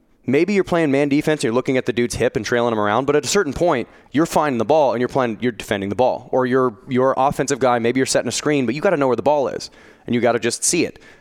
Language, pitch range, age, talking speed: English, 110-135 Hz, 20-39, 305 wpm